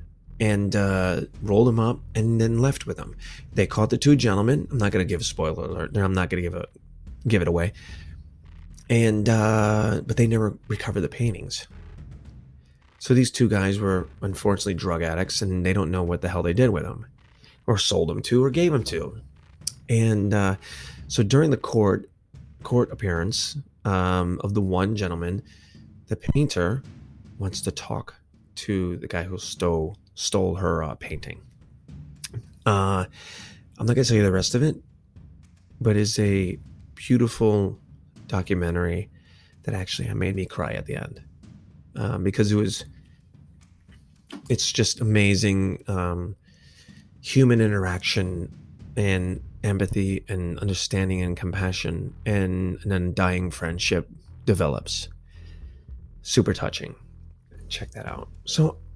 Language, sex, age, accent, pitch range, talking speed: English, male, 30-49, American, 85-105 Hz, 145 wpm